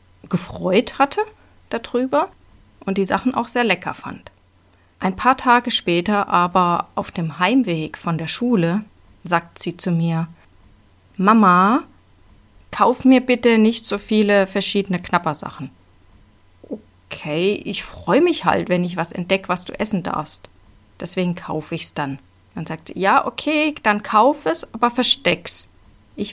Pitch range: 165-225 Hz